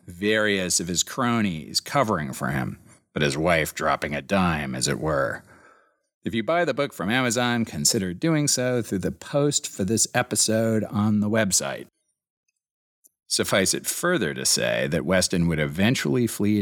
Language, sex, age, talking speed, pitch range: English, male, 40-59, 165 wpm, 80-110 Hz